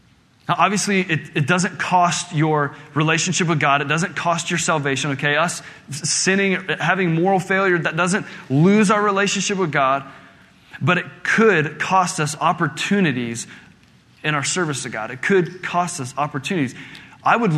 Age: 20-39